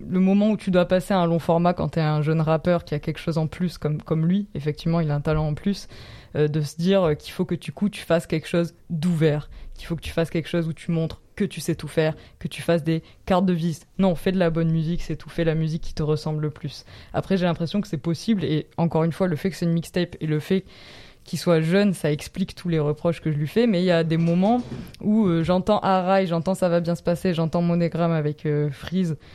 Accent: French